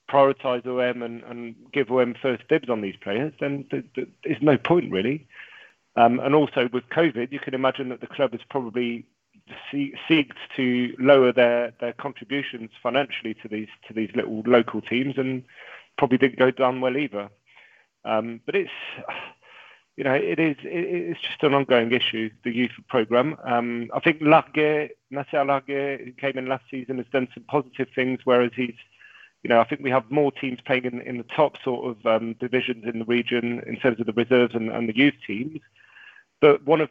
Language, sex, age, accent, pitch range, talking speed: English, male, 40-59, British, 120-140 Hz, 195 wpm